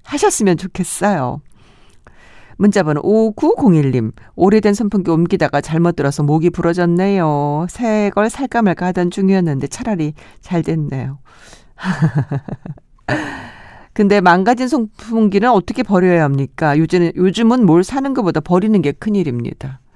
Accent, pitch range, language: native, 145-210 Hz, Korean